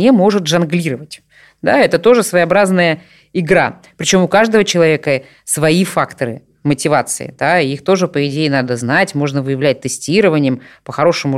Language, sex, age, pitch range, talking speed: Russian, female, 20-39, 150-205 Hz, 130 wpm